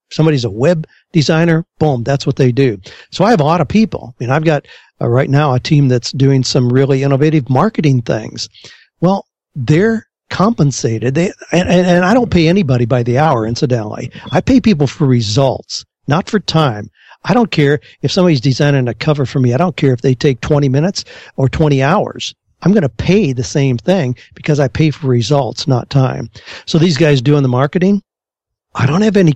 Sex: male